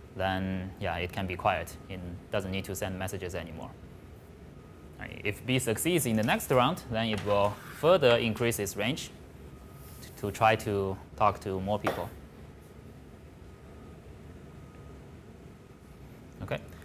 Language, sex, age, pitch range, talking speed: English, male, 20-39, 90-115 Hz, 125 wpm